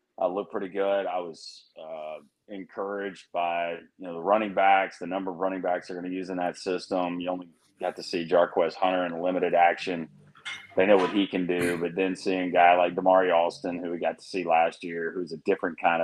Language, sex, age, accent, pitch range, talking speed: English, male, 30-49, American, 85-100 Hz, 230 wpm